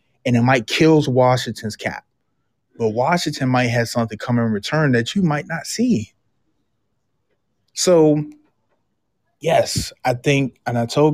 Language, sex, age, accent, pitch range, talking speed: English, male, 20-39, American, 115-135 Hz, 140 wpm